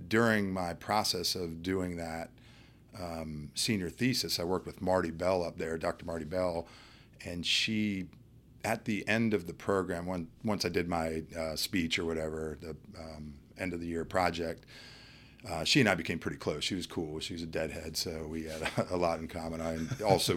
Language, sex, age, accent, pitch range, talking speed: English, male, 40-59, American, 80-95 Hz, 195 wpm